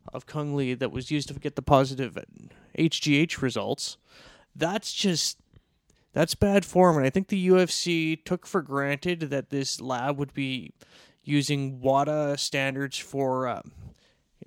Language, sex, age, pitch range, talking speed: English, male, 30-49, 135-180 Hz, 150 wpm